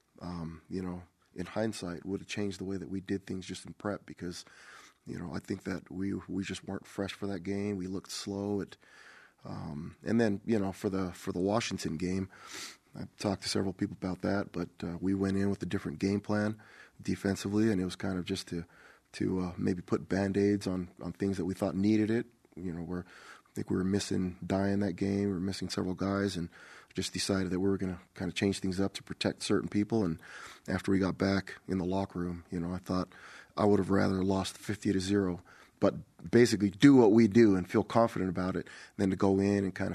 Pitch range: 90-100 Hz